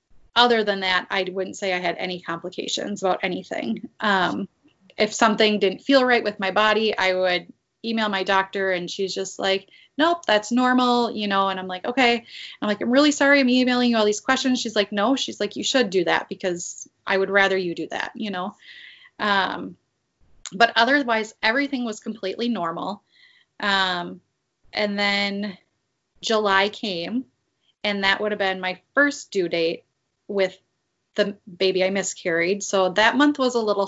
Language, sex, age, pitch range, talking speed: English, female, 20-39, 185-230 Hz, 175 wpm